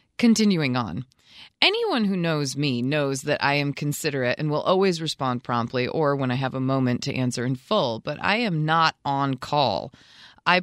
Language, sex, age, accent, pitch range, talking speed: English, female, 30-49, American, 135-220 Hz, 185 wpm